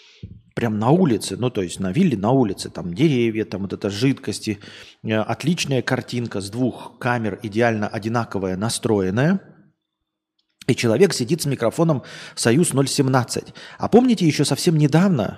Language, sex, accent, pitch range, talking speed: Russian, male, native, 110-150 Hz, 135 wpm